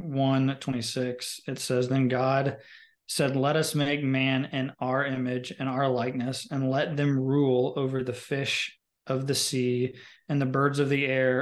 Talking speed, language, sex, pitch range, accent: 175 wpm, English, male, 125-140 Hz, American